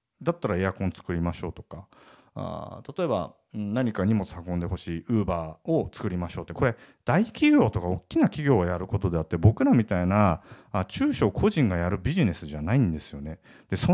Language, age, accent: Japanese, 40-59, native